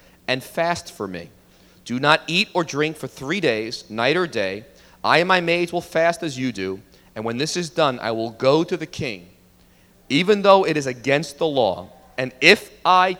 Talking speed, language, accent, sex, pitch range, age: 205 wpm, English, American, male, 120-180 Hz, 40-59